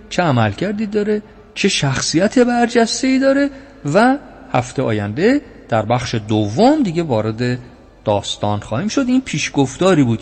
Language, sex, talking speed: Persian, male, 130 wpm